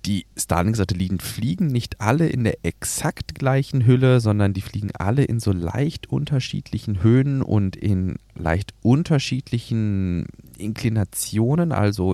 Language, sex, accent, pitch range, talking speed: German, male, German, 95-120 Hz, 130 wpm